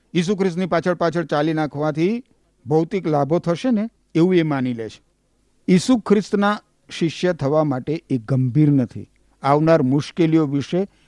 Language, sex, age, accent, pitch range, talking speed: Gujarati, male, 50-69, native, 145-190 Hz, 140 wpm